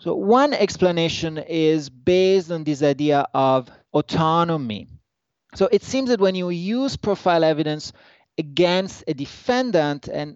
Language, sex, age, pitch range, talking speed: English, male, 30-49, 135-185 Hz, 135 wpm